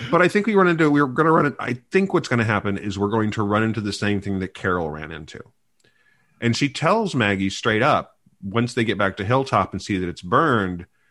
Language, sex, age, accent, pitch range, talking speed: English, male, 40-59, American, 100-125 Hz, 245 wpm